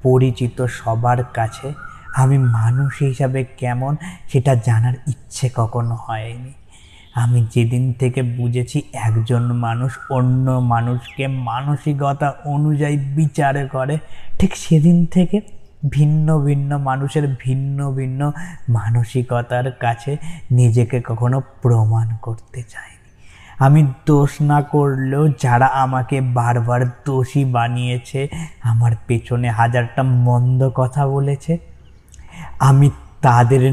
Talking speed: 100 wpm